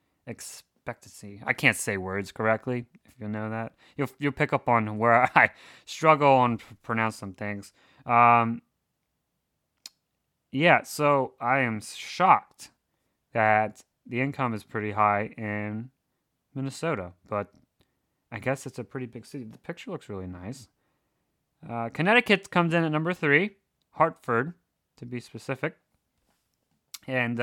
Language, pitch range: English, 105-140 Hz